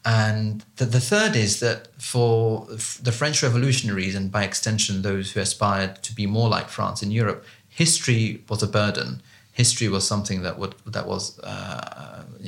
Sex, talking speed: male, 175 wpm